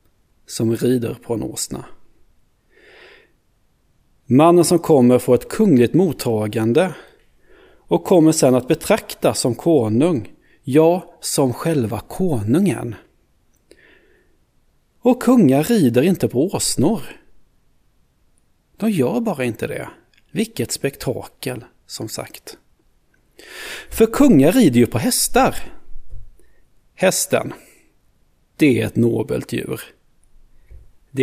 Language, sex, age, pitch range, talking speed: Swedish, male, 30-49, 115-170 Hz, 100 wpm